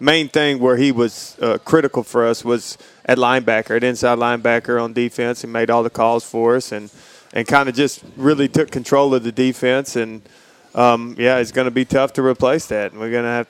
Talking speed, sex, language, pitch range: 225 wpm, male, English, 120-135 Hz